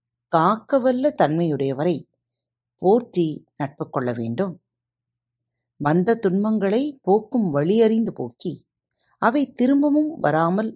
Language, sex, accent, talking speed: Tamil, female, native, 80 wpm